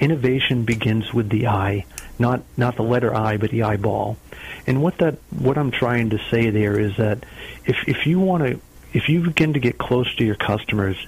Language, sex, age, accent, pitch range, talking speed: English, male, 40-59, American, 115-140 Hz, 205 wpm